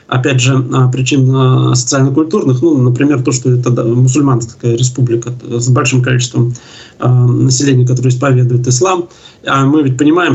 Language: Russian